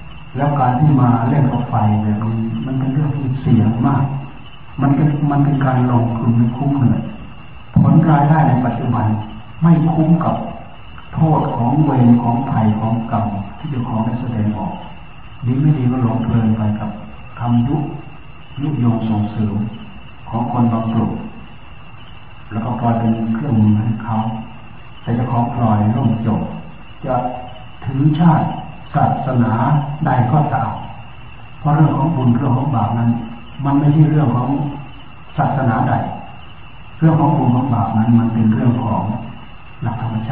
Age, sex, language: 60-79, male, Thai